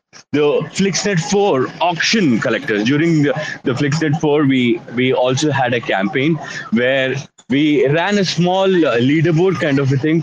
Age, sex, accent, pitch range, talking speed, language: 30-49, male, Indian, 120-155 Hz, 160 wpm, English